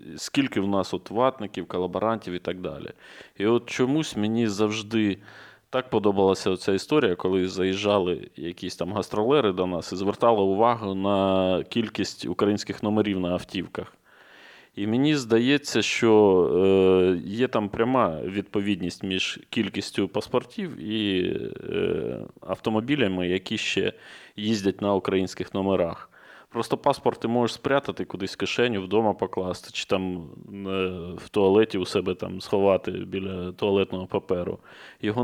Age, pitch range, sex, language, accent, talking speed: 20-39, 95-110 Hz, male, Ukrainian, native, 125 wpm